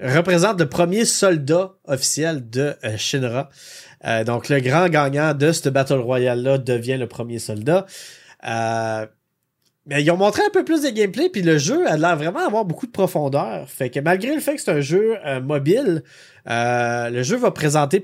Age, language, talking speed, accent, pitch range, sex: 30-49, French, 190 wpm, Canadian, 130-175 Hz, male